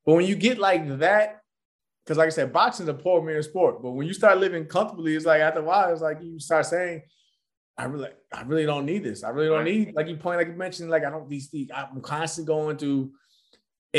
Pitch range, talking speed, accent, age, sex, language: 135-165 Hz, 250 wpm, American, 20-39, male, English